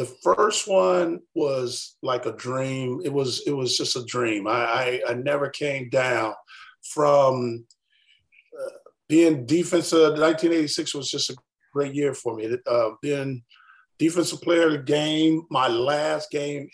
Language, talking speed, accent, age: English, 150 wpm, American, 40-59